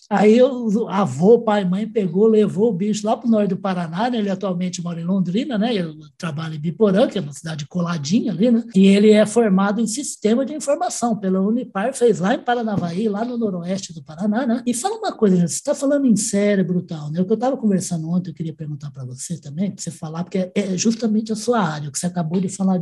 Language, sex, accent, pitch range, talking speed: Portuguese, male, Brazilian, 180-225 Hz, 245 wpm